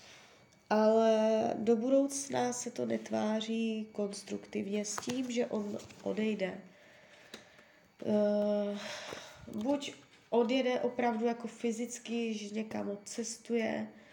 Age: 20-39